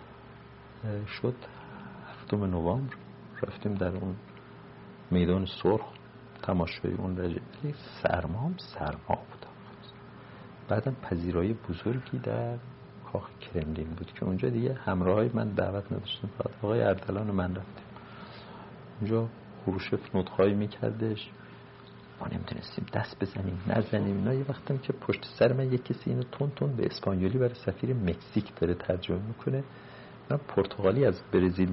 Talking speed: 120 wpm